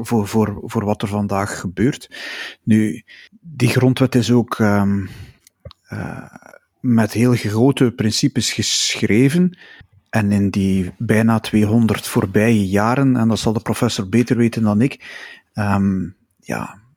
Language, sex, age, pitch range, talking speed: Dutch, male, 30-49, 105-125 Hz, 120 wpm